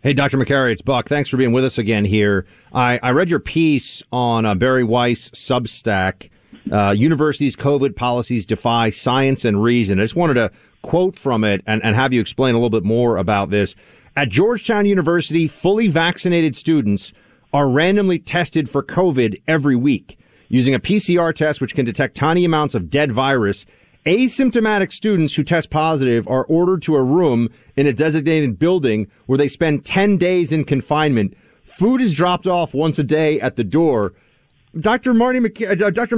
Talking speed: 180 wpm